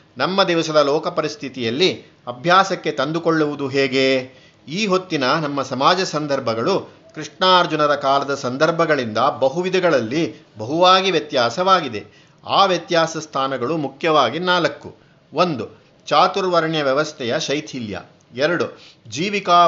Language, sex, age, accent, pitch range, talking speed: Kannada, male, 50-69, native, 140-175 Hz, 85 wpm